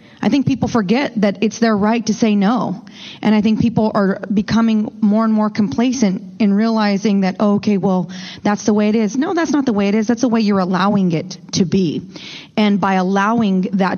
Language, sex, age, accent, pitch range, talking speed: English, female, 30-49, American, 185-220 Hz, 220 wpm